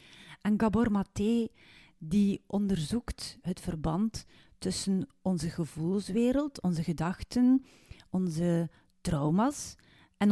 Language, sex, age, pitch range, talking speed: Dutch, female, 40-59, 165-210 Hz, 85 wpm